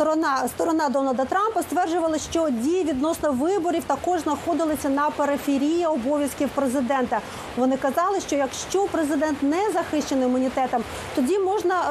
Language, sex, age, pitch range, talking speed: Ukrainian, female, 40-59, 260-335 Hz, 125 wpm